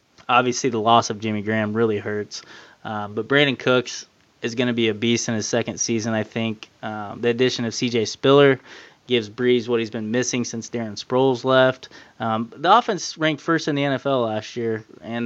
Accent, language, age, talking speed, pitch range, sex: American, English, 20-39, 200 wpm, 110-125 Hz, male